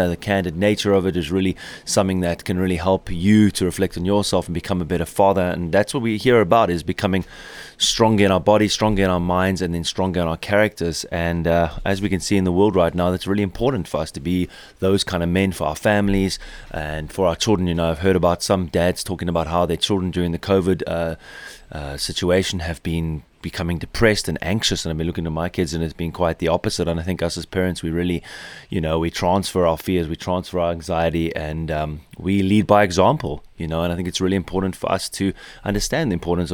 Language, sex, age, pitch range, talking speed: English, male, 20-39, 85-100 Hz, 245 wpm